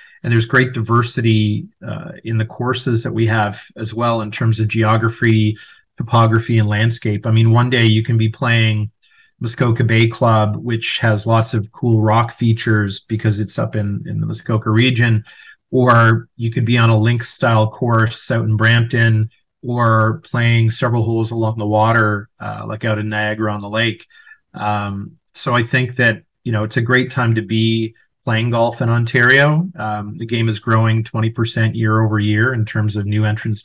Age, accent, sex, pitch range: 30-49, American, male, 110-120 Hz